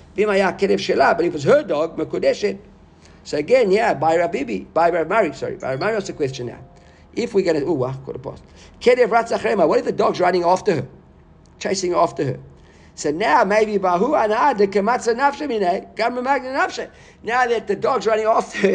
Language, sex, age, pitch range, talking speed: English, male, 50-69, 175-245 Hz, 190 wpm